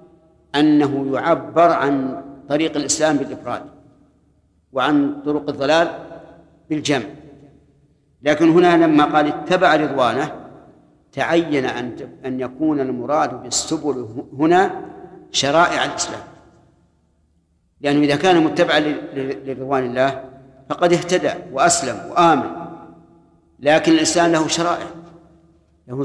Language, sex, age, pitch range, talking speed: Arabic, male, 50-69, 135-165 Hz, 95 wpm